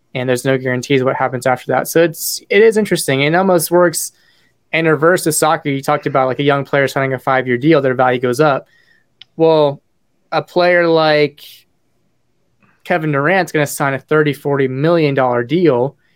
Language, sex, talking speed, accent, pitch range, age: English, male, 190 wpm, American, 130-155 Hz, 20-39